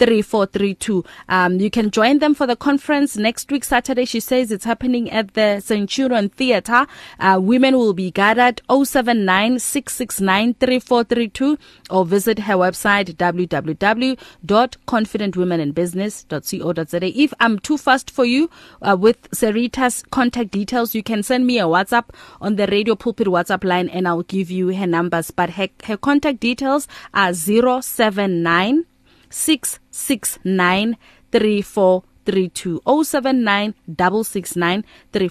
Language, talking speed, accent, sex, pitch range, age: English, 145 wpm, South African, female, 195-250 Hz, 30-49